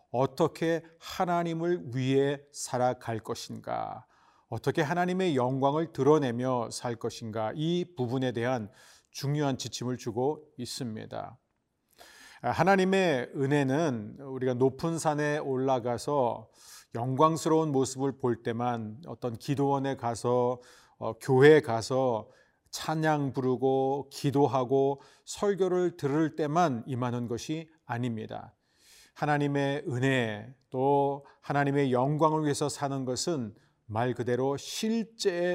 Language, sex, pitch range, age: Korean, male, 125-150 Hz, 40-59